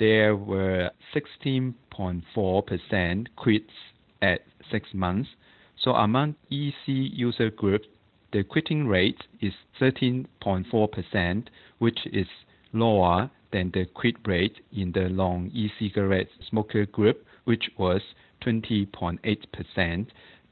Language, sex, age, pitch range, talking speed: English, male, 50-69, 95-125 Hz, 100 wpm